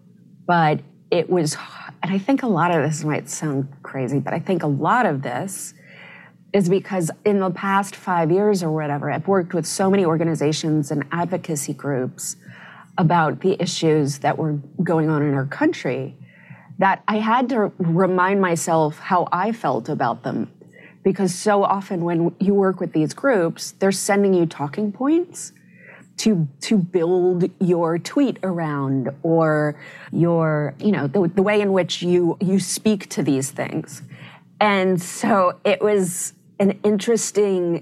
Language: English